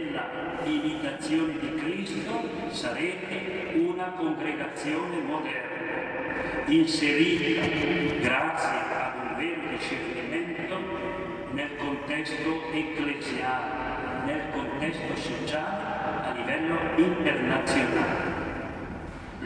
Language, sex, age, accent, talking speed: Italian, male, 40-59, native, 65 wpm